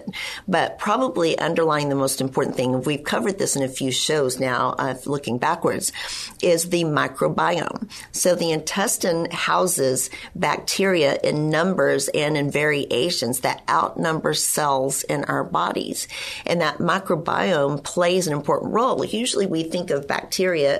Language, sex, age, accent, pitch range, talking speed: English, female, 50-69, American, 135-170 Hz, 140 wpm